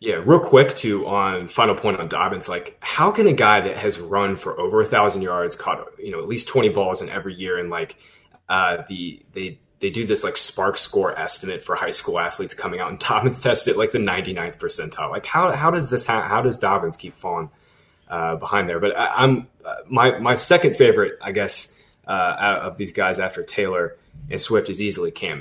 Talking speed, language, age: 220 wpm, English, 20-39